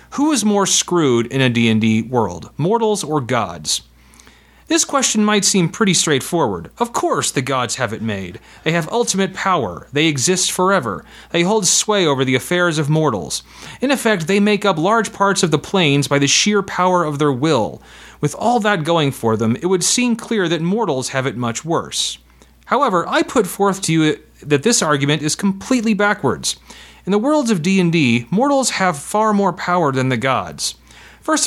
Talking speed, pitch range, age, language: 185 wpm, 140-205 Hz, 30-49, English